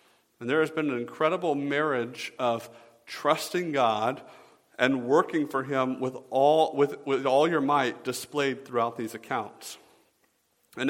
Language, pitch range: English, 130-160 Hz